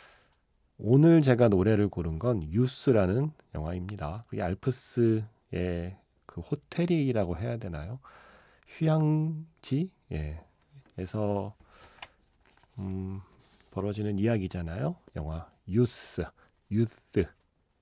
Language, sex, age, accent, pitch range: Korean, male, 30-49, native, 90-130 Hz